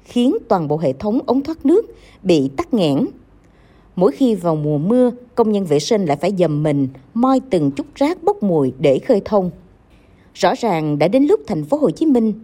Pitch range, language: 165-265 Hz, Vietnamese